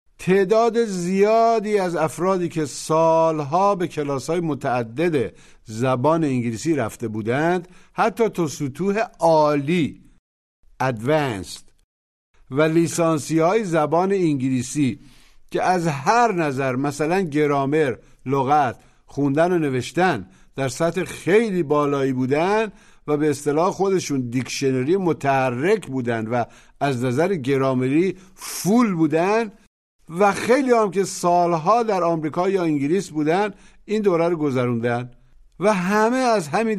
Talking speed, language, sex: 110 wpm, Persian, male